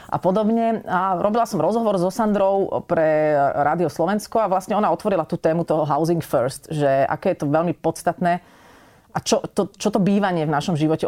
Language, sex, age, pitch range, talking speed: Slovak, female, 30-49, 150-185 Hz, 185 wpm